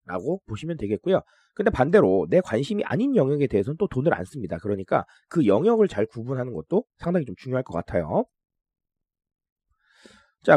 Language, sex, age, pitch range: Korean, male, 30-49, 125-195 Hz